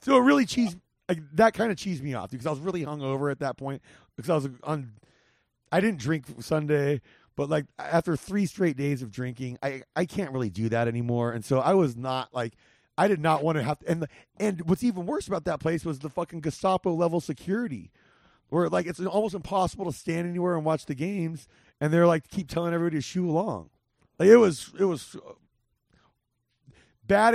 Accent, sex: American, male